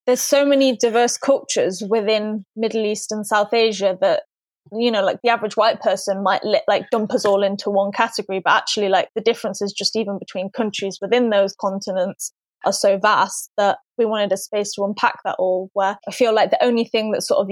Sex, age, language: female, 20-39, English